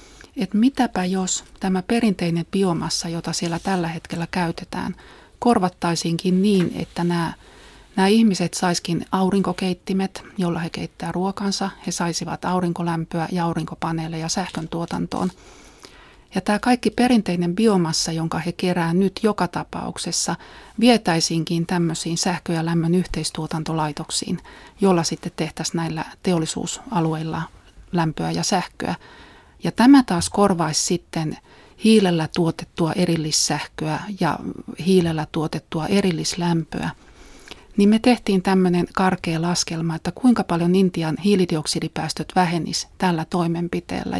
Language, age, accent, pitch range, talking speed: Finnish, 30-49, native, 165-190 Hz, 110 wpm